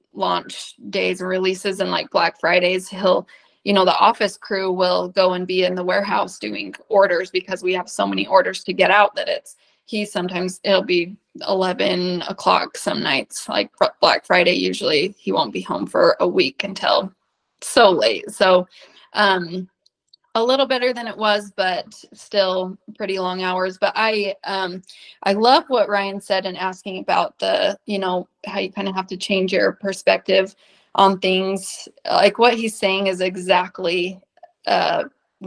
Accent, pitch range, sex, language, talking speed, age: American, 185-220 Hz, female, English, 170 wpm, 20-39